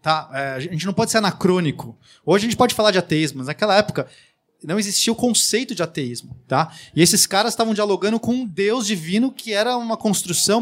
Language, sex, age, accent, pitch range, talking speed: Portuguese, male, 20-39, Brazilian, 170-215 Hz, 210 wpm